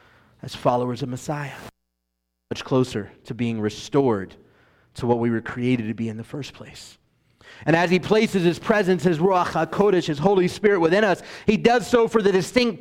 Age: 30-49